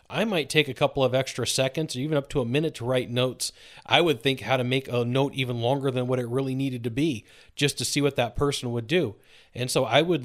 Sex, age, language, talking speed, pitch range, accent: male, 30-49, English, 270 wpm, 125-155 Hz, American